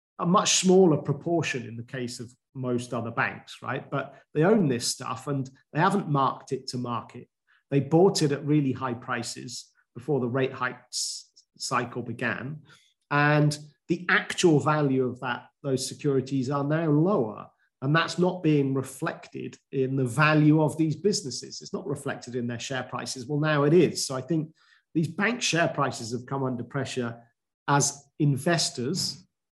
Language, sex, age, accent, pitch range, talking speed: English, male, 40-59, British, 125-155 Hz, 170 wpm